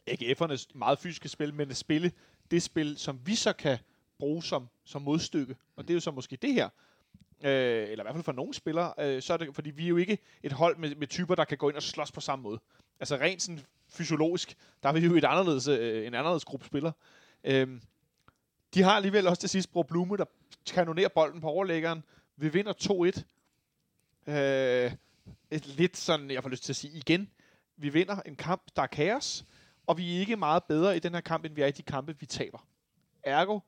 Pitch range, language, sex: 140-175 Hz, Danish, male